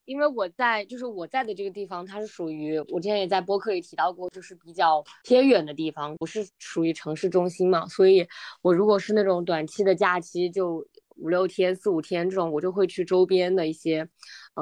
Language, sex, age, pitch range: Chinese, female, 20-39, 160-205 Hz